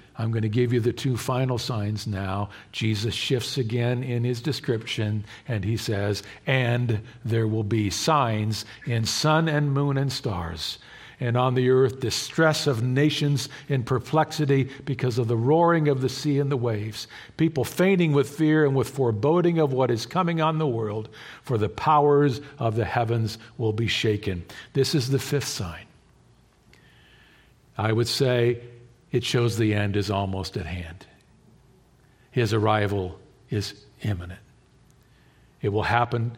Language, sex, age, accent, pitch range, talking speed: English, male, 50-69, American, 110-130 Hz, 155 wpm